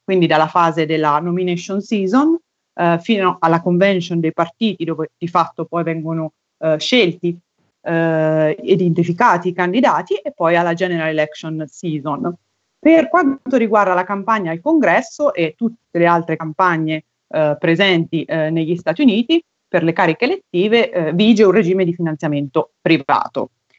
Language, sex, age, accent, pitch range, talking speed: Italian, female, 30-49, native, 165-225 Hz, 145 wpm